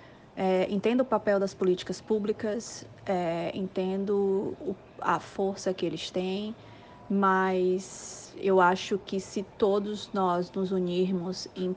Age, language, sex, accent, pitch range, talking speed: 20-39, Portuguese, female, Brazilian, 180-210 Hz, 125 wpm